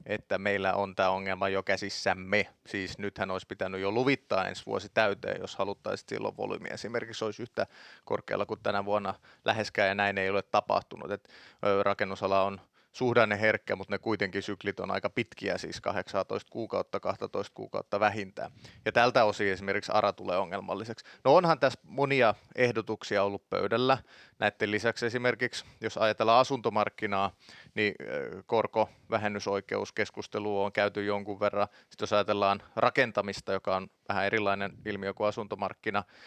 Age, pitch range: 30-49, 100-110 Hz